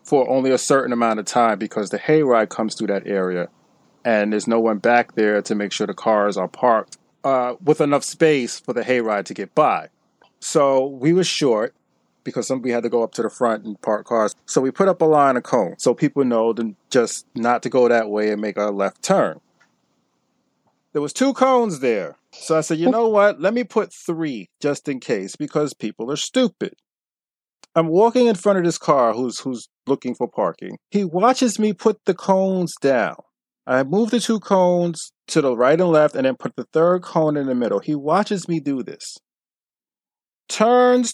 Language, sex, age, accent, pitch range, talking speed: English, male, 30-49, American, 125-200 Hz, 205 wpm